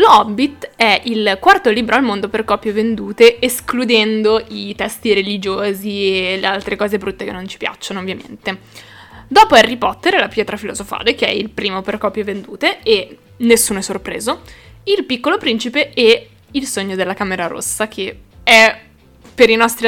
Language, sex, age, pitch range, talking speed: Italian, female, 10-29, 205-250 Hz, 170 wpm